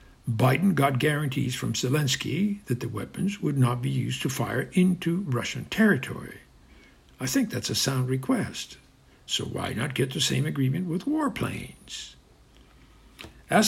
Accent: American